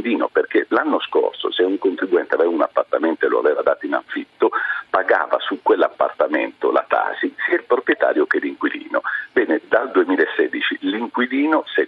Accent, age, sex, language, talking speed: native, 40-59, male, Italian, 150 wpm